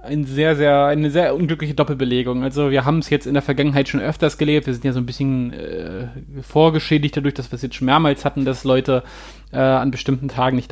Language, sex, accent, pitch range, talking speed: German, male, German, 130-155 Hz, 230 wpm